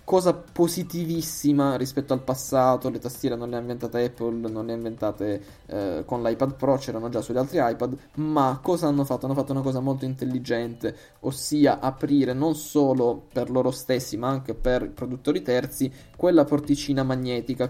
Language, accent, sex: Italian, native, male